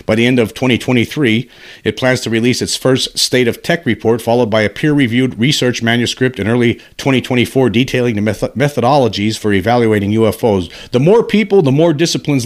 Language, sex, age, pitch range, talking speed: English, male, 50-69, 100-125 Hz, 175 wpm